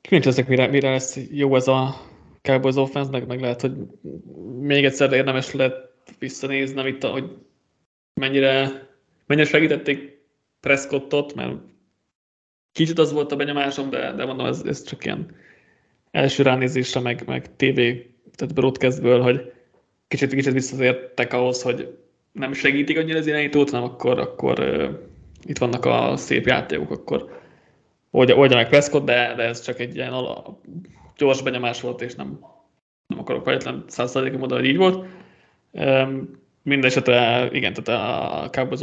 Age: 20-39